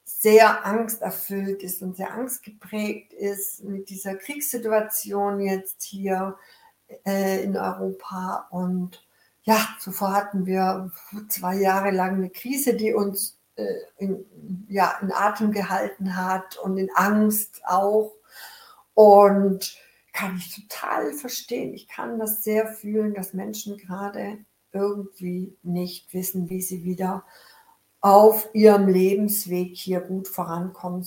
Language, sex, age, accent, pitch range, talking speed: German, female, 60-79, German, 190-220 Hz, 120 wpm